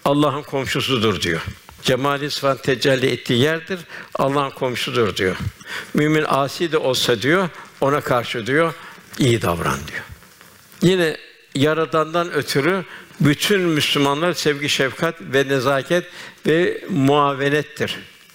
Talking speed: 110 wpm